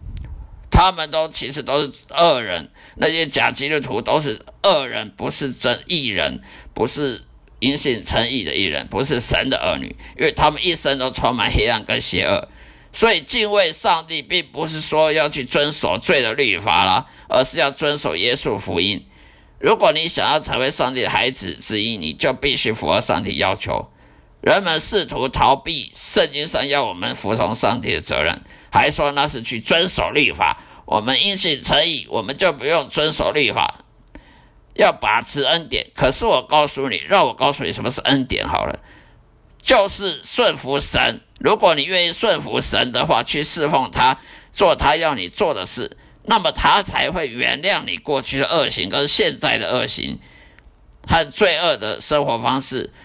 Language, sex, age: Chinese, male, 50-69